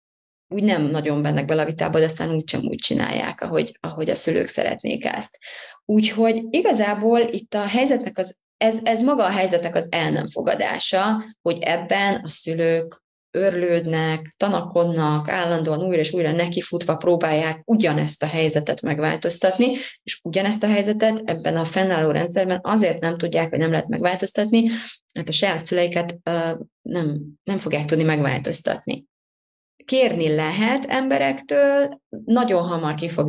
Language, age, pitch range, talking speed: Hungarian, 20-39, 155-220 Hz, 140 wpm